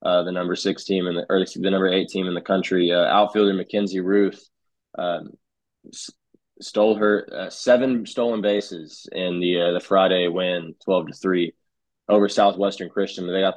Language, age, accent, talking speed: English, 20-39, American, 180 wpm